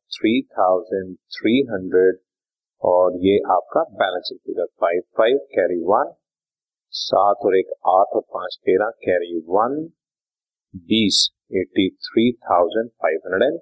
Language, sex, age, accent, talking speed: Hindi, male, 30-49, native, 85 wpm